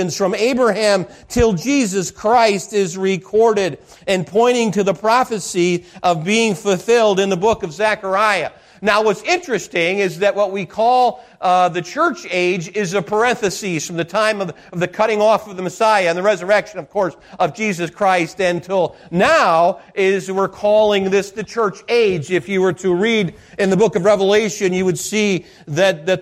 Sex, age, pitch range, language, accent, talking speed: male, 40-59, 185-215 Hz, English, American, 180 wpm